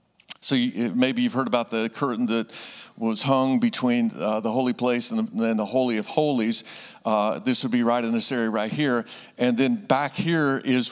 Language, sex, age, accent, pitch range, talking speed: English, male, 50-69, American, 115-140 Hz, 205 wpm